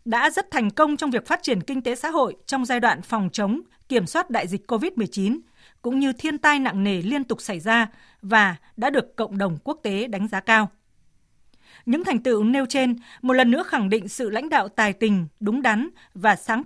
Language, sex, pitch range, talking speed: Vietnamese, female, 210-270 Hz, 220 wpm